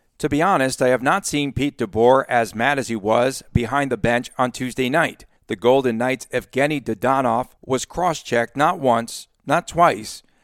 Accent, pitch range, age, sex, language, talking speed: American, 130-185 Hz, 50-69, male, English, 180 wpm